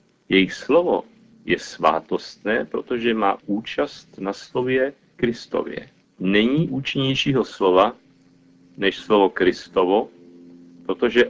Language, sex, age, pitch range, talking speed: Czech, male, 40-59, 95-125 Hz, 90 wpm